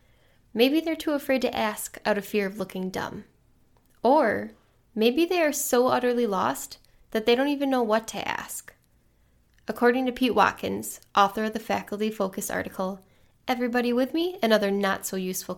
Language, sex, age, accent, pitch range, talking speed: English, female, 10-29, American, 195-255 Hz, 165 wpm